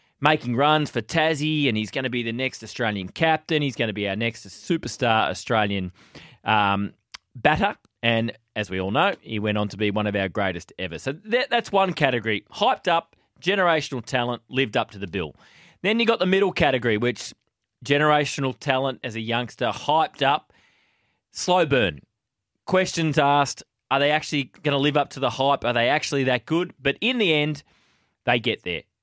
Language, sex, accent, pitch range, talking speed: English, male, Australian, 115-155 Hz, 190 wpm